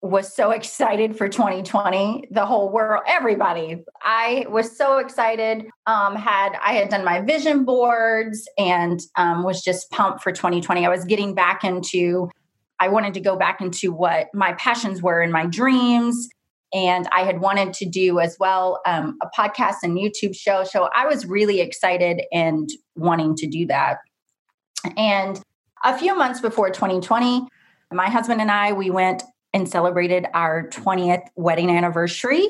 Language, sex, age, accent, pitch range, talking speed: English, female, 30-49, American, 180-225 Hz, 165 wpm